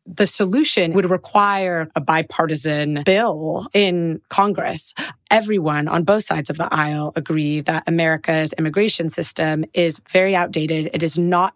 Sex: female